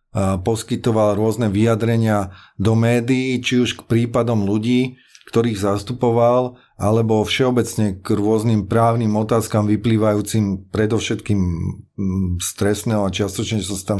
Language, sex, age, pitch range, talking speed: Slovak, male, 30-49, 105-120 Hz, 115 wpm